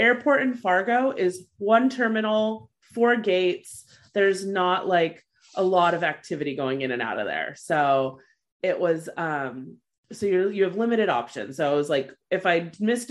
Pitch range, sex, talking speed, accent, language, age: 140-190 Hz, female, 175 wpm, American, English, 30-49